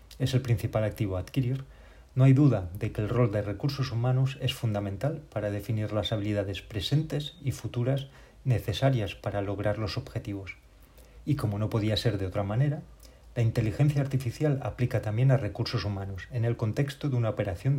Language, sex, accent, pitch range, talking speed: Spanish, male, Spanish, 105-130 Hz, 175 wpm